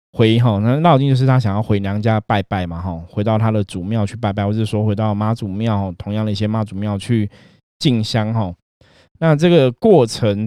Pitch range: 100-125 Hz